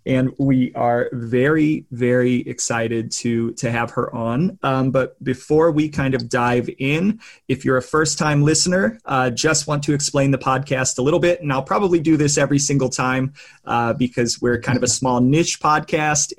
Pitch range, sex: 120-135 Hz, male